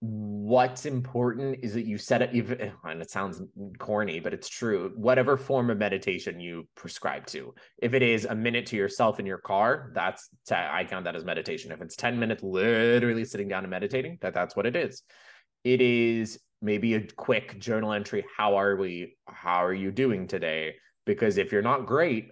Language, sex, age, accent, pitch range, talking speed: English, male, 20-39, American, 100-125 Hz, 195 wpm